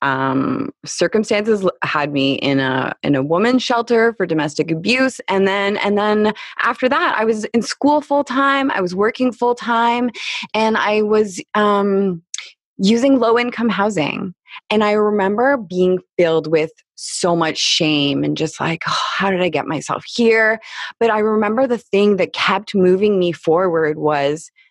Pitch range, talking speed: 180-235 Hz, 165 wpm